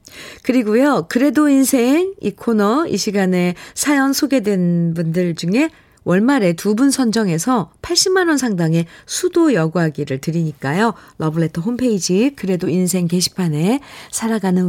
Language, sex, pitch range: Korean, female, 165-250 Hz